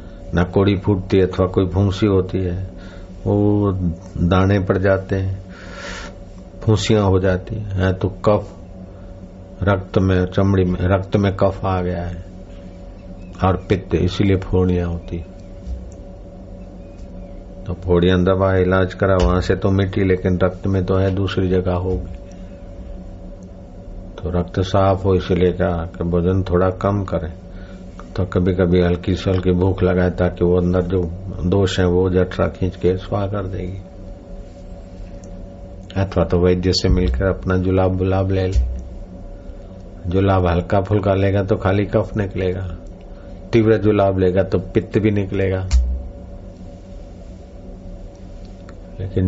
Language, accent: Hindi, native